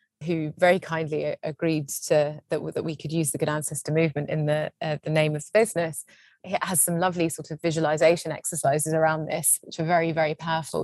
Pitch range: 160-180 Hz